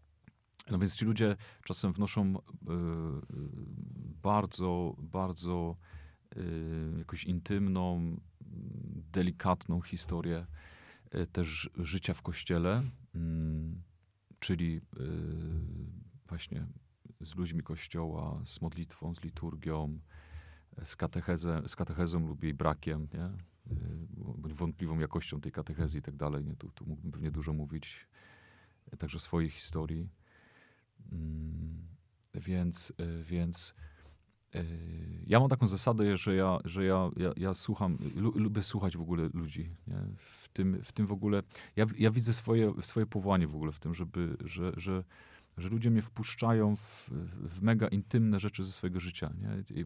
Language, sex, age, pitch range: Polish, male, 40-59, 80-100 Hz